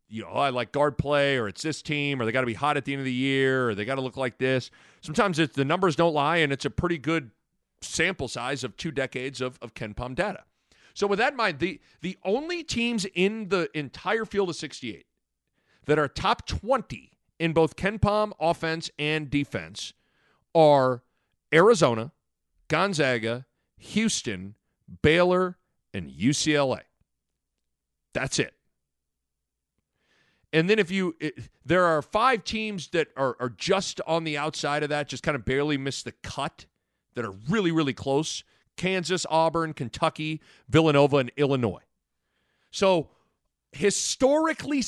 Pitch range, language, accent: 125-175 Hz, English, American